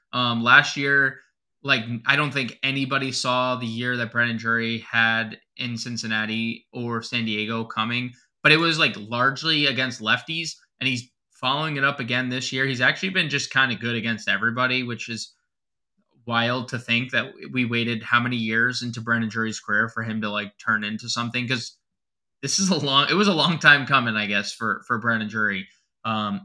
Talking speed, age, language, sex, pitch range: 195 wpm, 20-39, English, male, 115-135 Hz